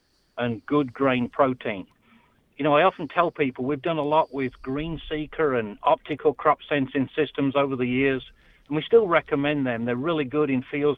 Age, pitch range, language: 50-69, 130-150 Hz, English